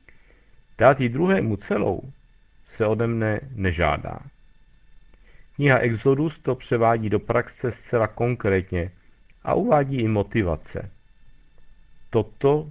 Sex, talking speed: male, 100 wpm